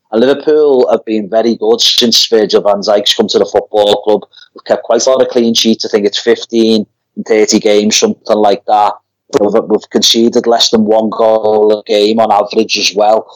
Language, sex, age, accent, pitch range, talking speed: English, male, 30-49, British, 110-130 Hz, 205 wpm